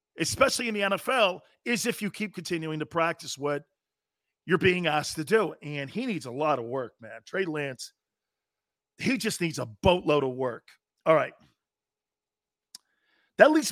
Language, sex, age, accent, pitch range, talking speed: English, male, 40-59, American, 140-180 Hz, 165 wpm